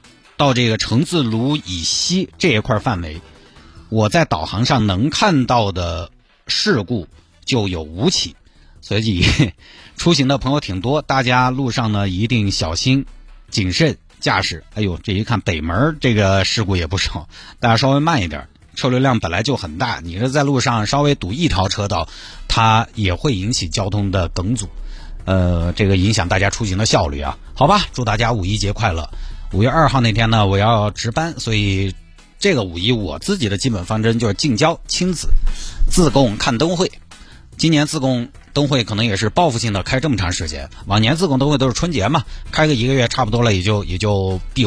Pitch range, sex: 95-130 Hz, male